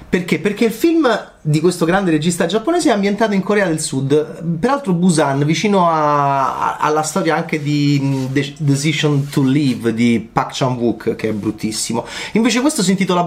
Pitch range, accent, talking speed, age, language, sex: 135-200 Hz, native, 170 wpm, 30-49, Italian, male